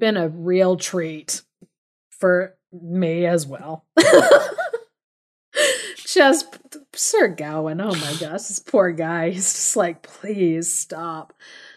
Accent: American